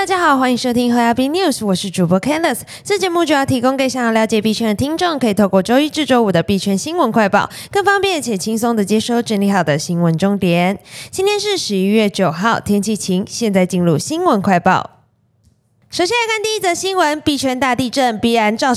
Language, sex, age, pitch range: Chinese, female, 20-39, 215-335 Hz